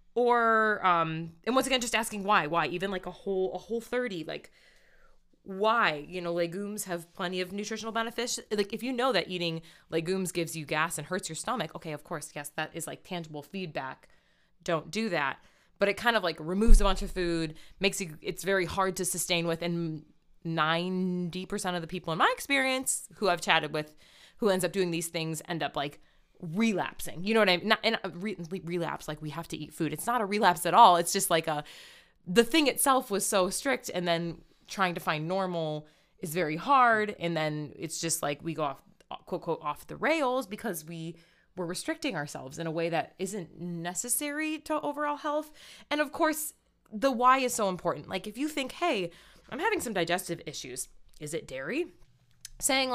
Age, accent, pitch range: 20-39, American, 165-225 Hz